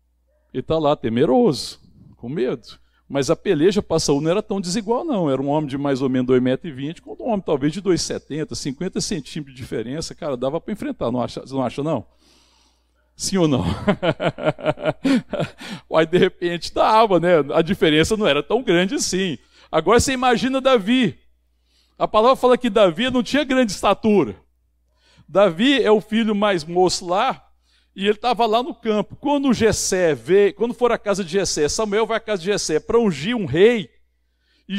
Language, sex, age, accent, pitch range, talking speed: Portuguese, male, 60-79, Brazilian, 140-225 Hz, 180 wpm